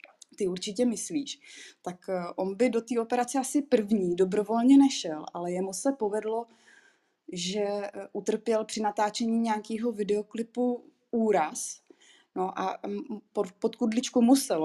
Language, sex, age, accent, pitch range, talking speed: Czech, female, 20-39, native, 195-240 Hz, 115 wpm